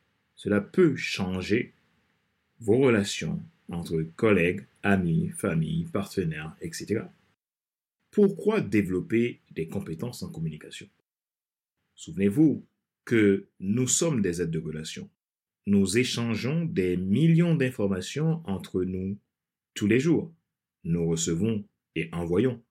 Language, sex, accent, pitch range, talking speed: French, male, French, 90-150 Hz, 105 wpm